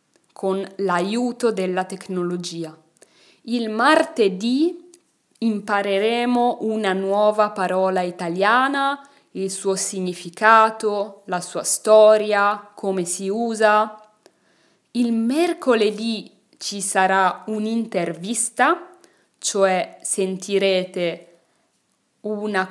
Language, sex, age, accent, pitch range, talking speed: Italian, female, 20-39, native, 185-225 Hz, 75 wpm